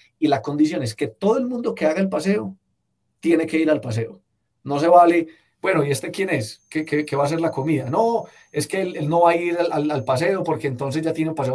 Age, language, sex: 30-49, Spanish, male